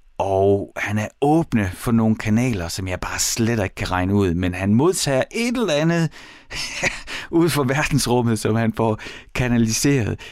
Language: Danish